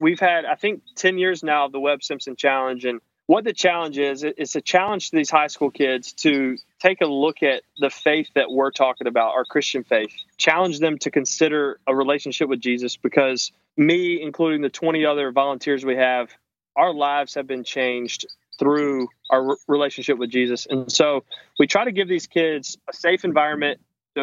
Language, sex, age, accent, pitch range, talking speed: English, male, 20-39, American, 135-160 Hz, 195 wpm